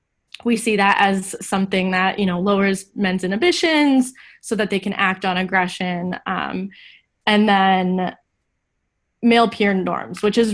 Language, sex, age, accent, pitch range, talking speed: English, female, 10-29, American, 195-230 Hz, 150 wpm